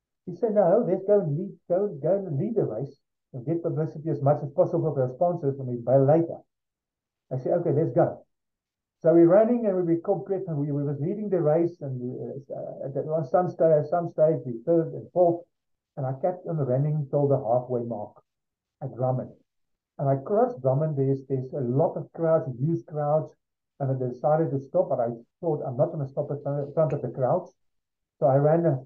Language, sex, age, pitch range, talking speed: English, male, 50-69, 135-175 Hz, 215 wpm